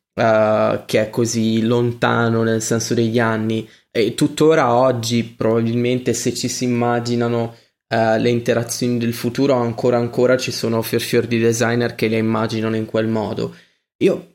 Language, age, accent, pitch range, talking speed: Italian, 20-39, native, 115-130 Hz, 155 wpm